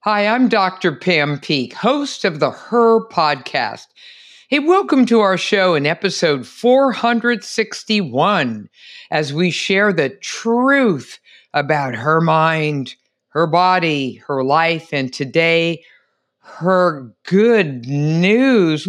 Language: English